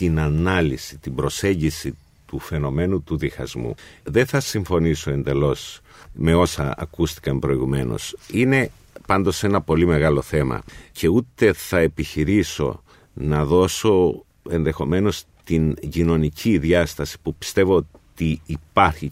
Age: 50-69